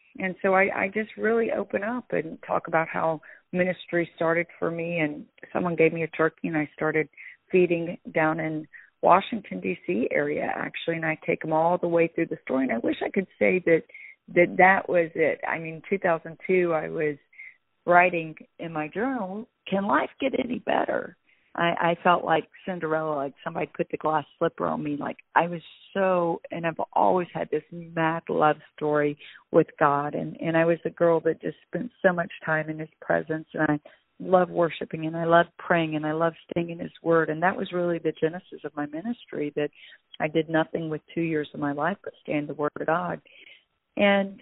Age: 40-59